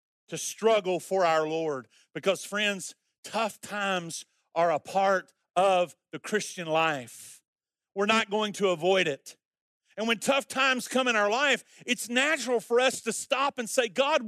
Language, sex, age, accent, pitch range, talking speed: English, male, 40-59, American, 150-225 Hz, 165 wpm